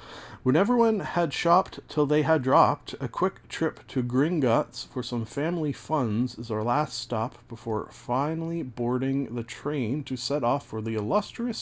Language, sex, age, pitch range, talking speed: English, male, 40-59, 110-140 Hz, 165 wpm